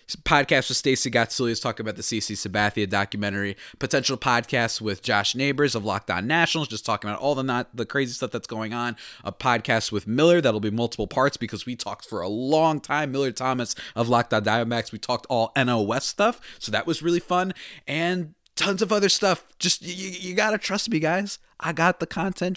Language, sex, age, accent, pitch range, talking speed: English, male, 20-39, American, 110-160 Hz, 200 wpm